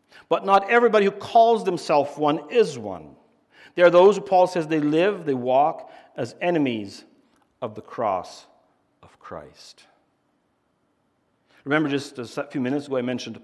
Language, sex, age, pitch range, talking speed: English, male, 60-79, 120-175 Hz, 150 wpm